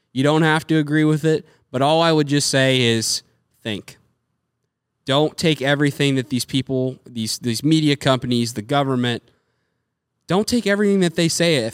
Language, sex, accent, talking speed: English, male, American, 175 wpm